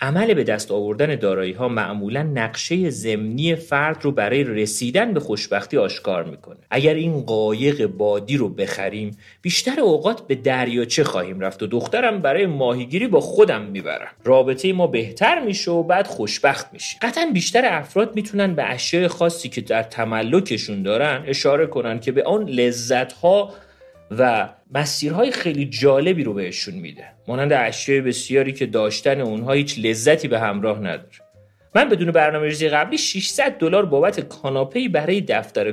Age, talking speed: 40-59, 150 wpm